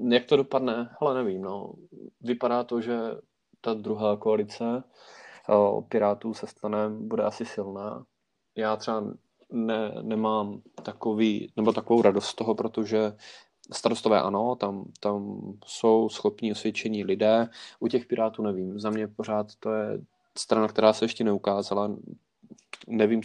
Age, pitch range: 20-39, 105-115 Hz